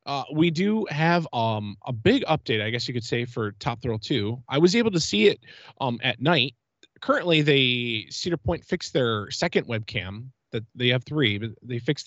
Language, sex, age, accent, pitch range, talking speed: English, male, 20-39, American, 115-155 Hz, 205 wpm